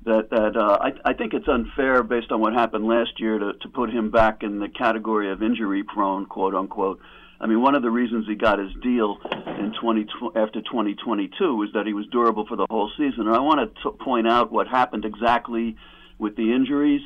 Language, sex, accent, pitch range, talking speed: English, male, American, 110-125 Hz, 220 wpm